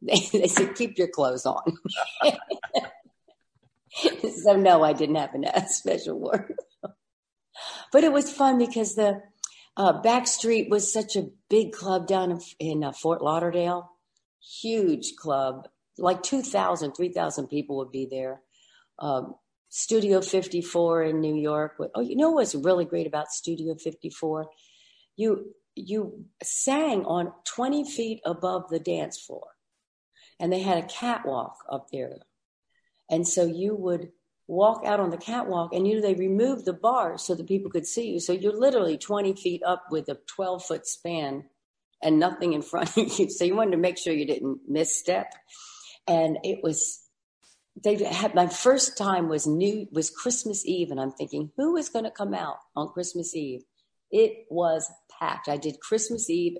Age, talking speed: 50-69, 160 wpm